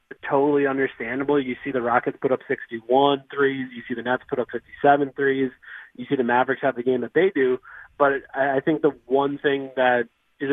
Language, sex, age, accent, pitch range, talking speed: English, male, 30-49, American, 130-145 Hz, 205 wpm